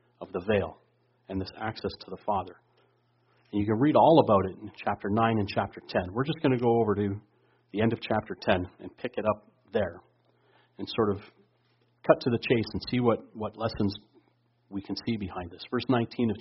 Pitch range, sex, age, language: 105-130 Hz, male, 40-59, English